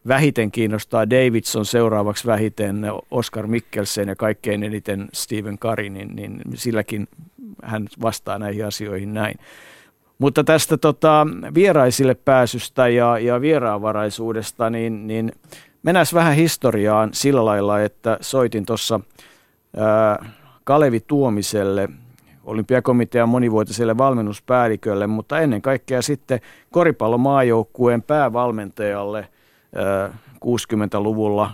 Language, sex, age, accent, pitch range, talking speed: Finnish, male, 50-69, native, 105-125 Hz, 95 wpm